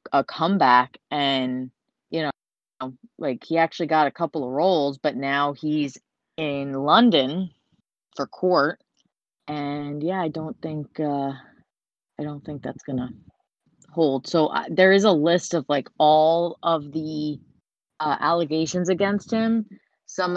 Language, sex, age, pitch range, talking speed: English, female, 30-49, 145-175 Hz, 140 wpm